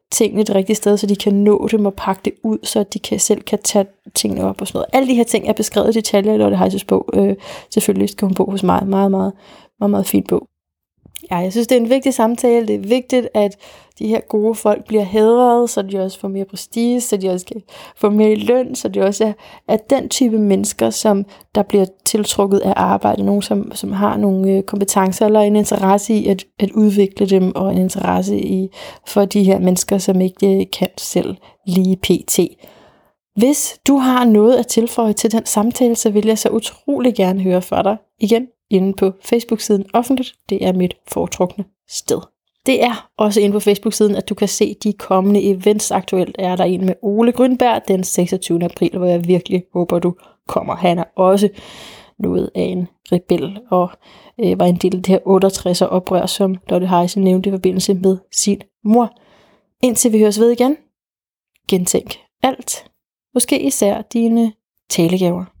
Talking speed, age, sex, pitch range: 200 wpm, 30-49, female, 185-225 Hz